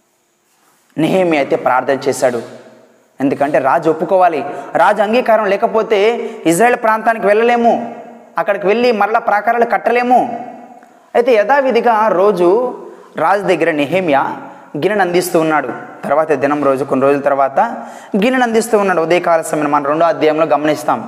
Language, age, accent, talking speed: Telugu, 20-39, native, 115 wpm